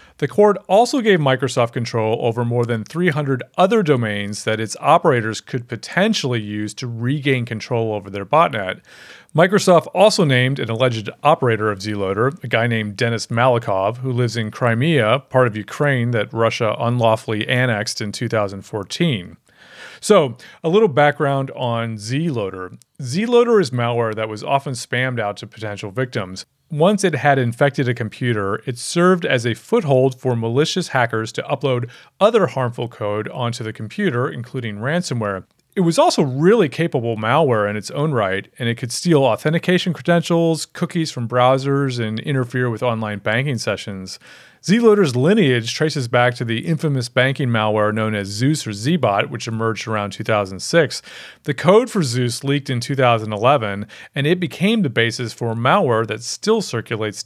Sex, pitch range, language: male, 110-150 Hz, English